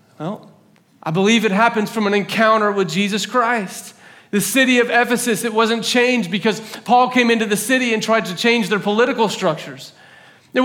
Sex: male